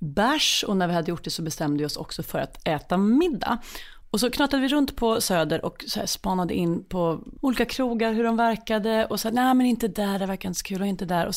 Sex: female